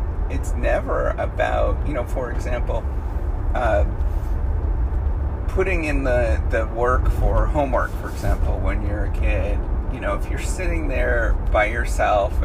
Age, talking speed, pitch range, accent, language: 30-49, 140 wpm, 75-90 Hz, American, English